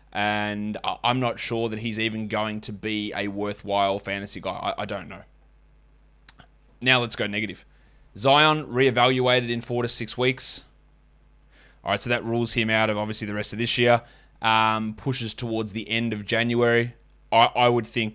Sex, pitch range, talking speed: male, 110-145 Hz, 180 wpm